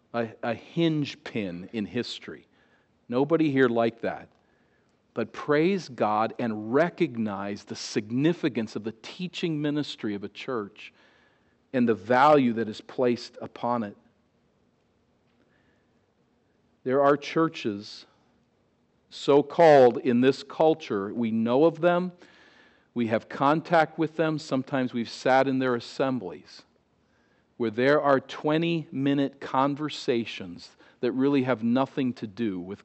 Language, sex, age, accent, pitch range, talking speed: English, male, 40-59, American, 115-145 Hz, 120 wpm